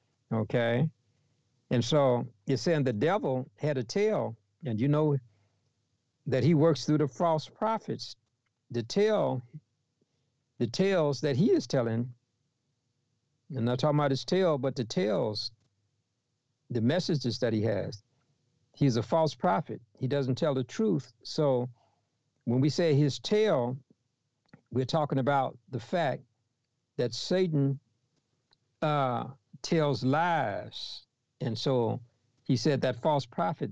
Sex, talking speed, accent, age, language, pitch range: male, 130 wpm, American, 60-79, English, 120-145 Hz